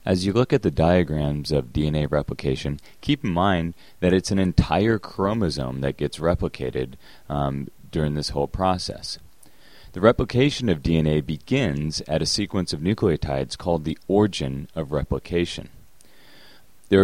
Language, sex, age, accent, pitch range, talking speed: English, male, 30-49, American, 75-100 Hz, 145 wpm